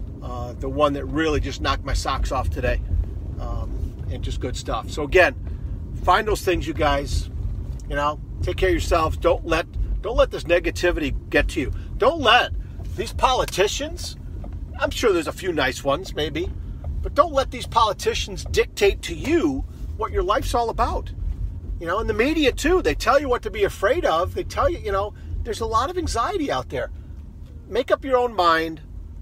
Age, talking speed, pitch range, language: 40-59, 195 wpm, 100-170 Hz, English